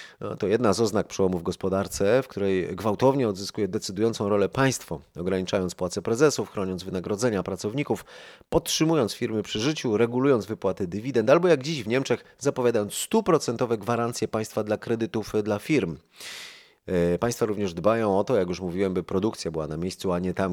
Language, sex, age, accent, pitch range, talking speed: Polish, male, 30-49, native, 95-125 Hz, 165 wpm